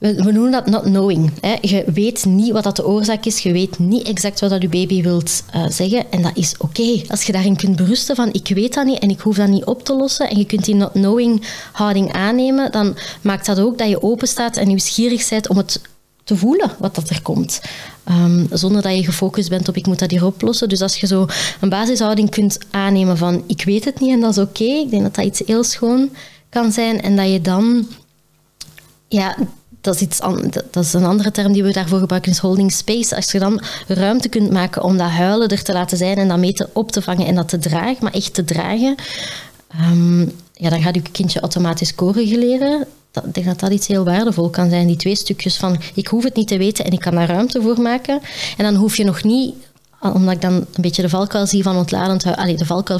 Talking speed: 235 wpm